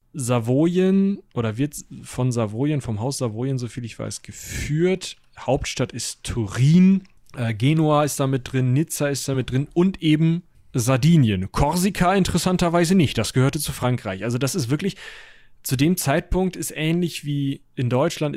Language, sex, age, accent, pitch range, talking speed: German, male, 30-49, German, 125-160 Hz, 150 wpm